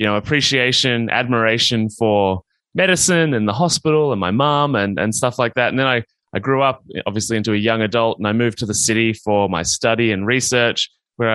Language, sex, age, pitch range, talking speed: English, male, 20-39, 110-125 Hz, 210 wpm